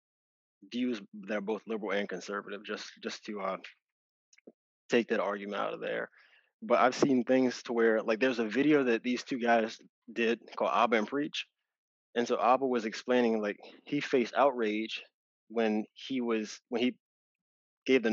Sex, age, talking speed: male, 20-39, 170 wpm